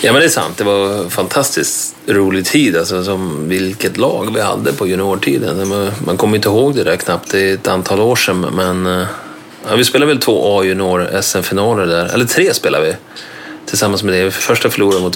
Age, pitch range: 30-49, 95-125 Hz